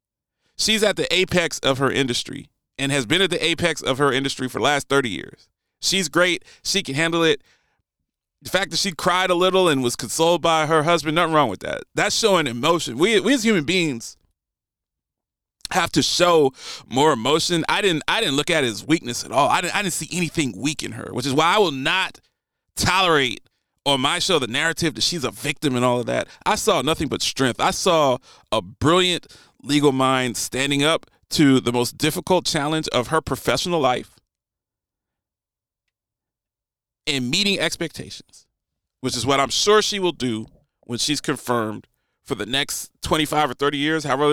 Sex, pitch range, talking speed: male, 135-180 Hz, 190 wpm